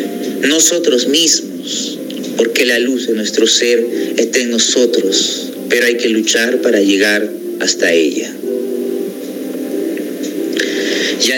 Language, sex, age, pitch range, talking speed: Spanish, male, 40-59, 110-150 Hz, 105 wpm